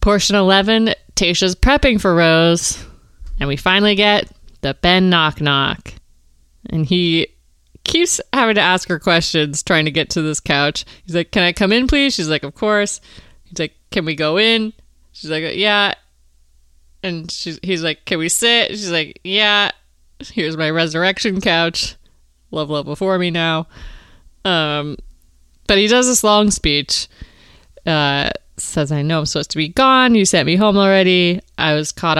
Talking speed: 170 wpm